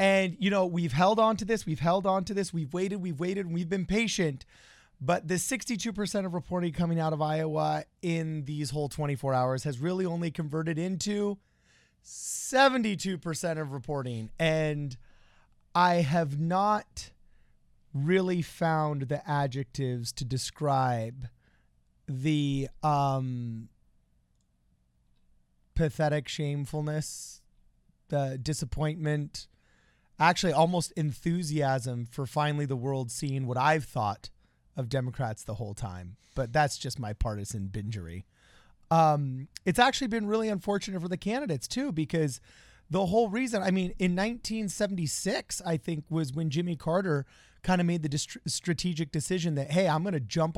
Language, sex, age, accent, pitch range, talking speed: English, male, 30-49, American, 130-180 Hz, 140 wpm